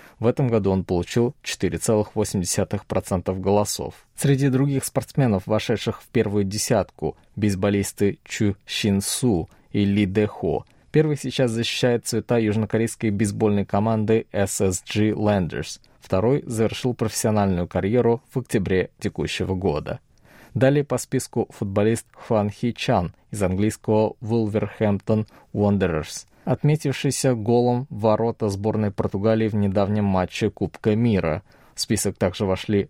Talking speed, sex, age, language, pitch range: 115 wpm, male, 20-39, Russian, 100-115 Hz